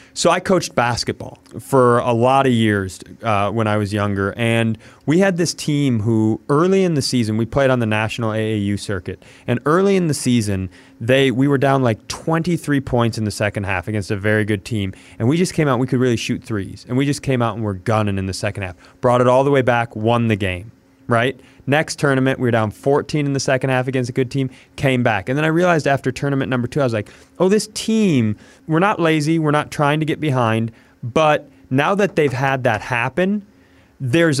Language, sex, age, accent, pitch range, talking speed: English, male, 30-49, American, 120-165 Hz, 230 wpm